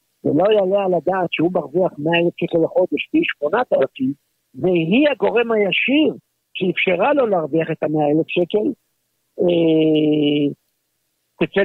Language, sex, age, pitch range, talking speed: Hebrew, male, 50-69, 150-205 Hz, 125 wpm